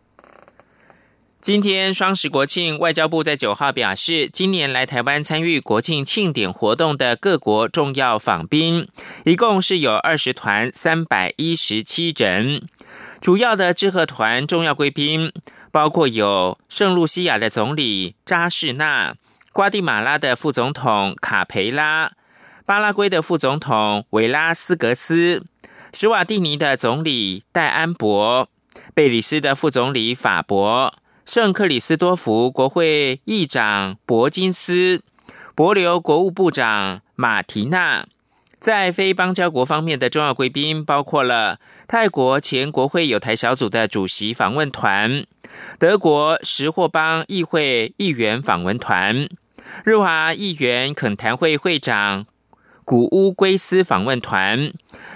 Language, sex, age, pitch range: German, male, 20-39, 125-180 Hz